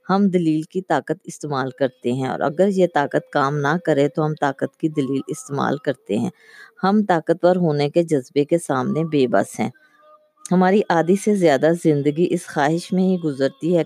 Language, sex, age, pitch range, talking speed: Urdu, female, 20-39, 145-185 Hz, 185 wpm